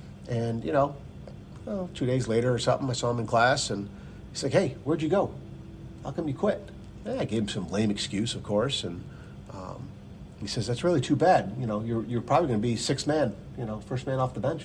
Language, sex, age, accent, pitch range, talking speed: English, male, 50-69, American, 100-130 Hz, 240 wpm